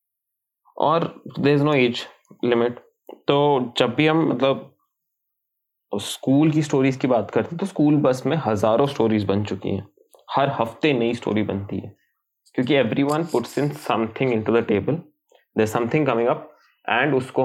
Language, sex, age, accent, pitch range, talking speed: Hindi, male, 20-39, native, 115-145 Hz, 170 wpm